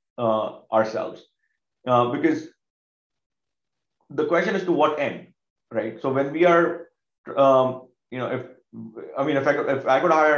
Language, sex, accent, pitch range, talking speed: English, male, Indian, 120-150 Hz, 155 wpm